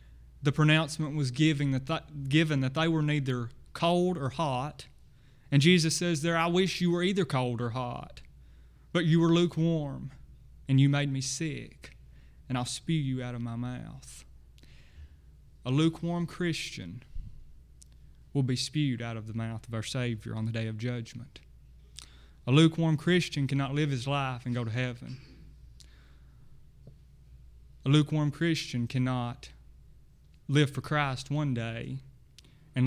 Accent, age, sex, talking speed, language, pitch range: American, 30-49, male, 145 wpm, English, 115-150 Hz